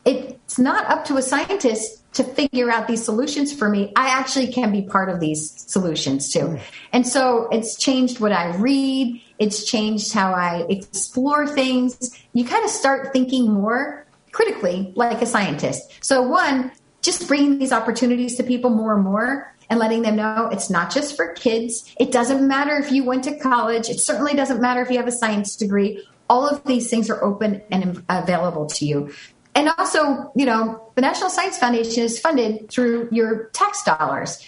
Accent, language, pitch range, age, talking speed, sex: American, English, 210-265 Hz, 30-49, 185 wpm, female